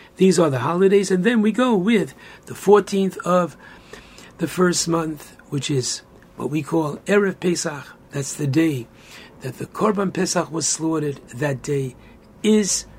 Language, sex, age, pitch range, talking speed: English, male, 60-79, 155-195 Hz, 155 wpm